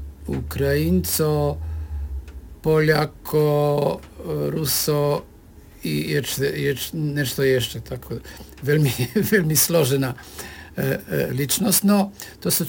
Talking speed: 85 wpm